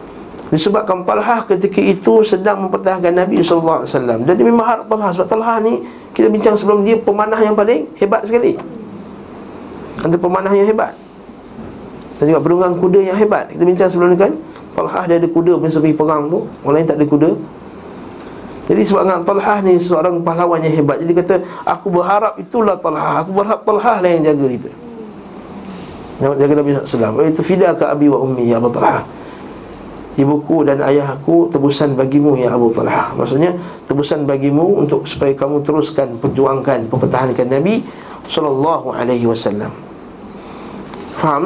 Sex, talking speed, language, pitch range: male, 160 wpm, Malay, 140-200 Hz